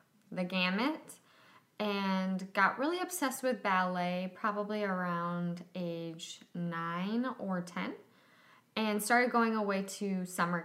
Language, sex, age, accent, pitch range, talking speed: English, female, 10-29, American, 175-220 Hz, 115 wpm